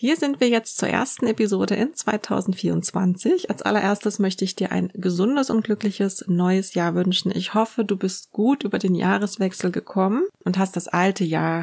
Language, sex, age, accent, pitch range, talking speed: German, female, 30-49, German, 180-220 Hz, 180 wpm